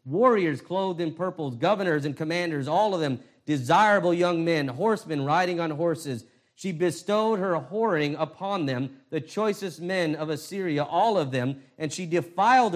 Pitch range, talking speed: 135-195 Hz, 160 wpm